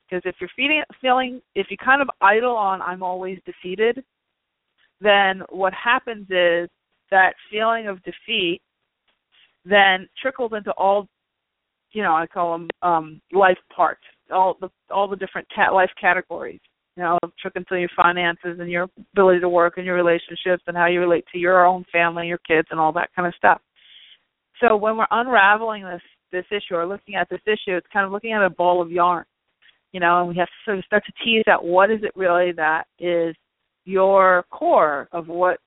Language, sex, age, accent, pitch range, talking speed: English, female, 40-59, American, 175-225 Hz, 195 wpm